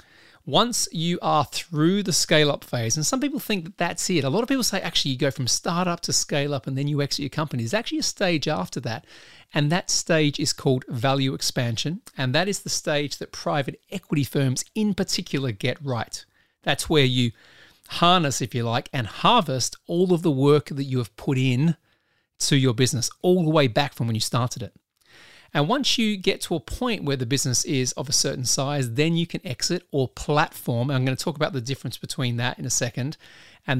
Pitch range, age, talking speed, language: 125-165 Hz, 40-59, 215 wpm, English